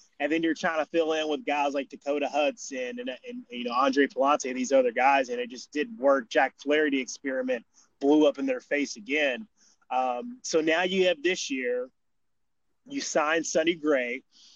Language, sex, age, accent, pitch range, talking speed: English, male, 20-39, American, 135-185 Hz, 200 wpm